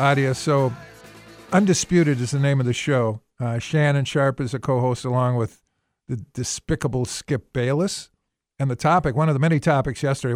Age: 50-69